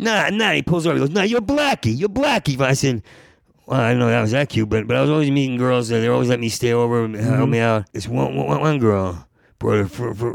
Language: English